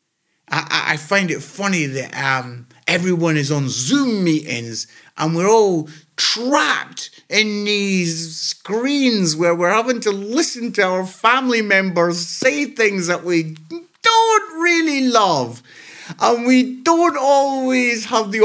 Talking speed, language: 135 wpm, English